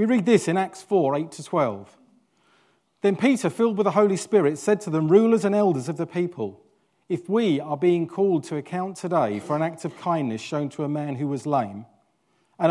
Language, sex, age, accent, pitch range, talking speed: English, male, 40-59, British, 130-175 Hz, 210 wpm